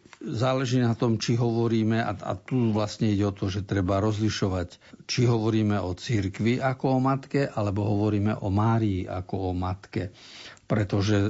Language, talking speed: Slovak, 155 wpm